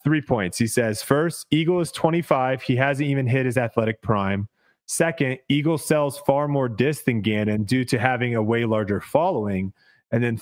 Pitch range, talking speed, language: 120-150 Hz, 185 wpm, English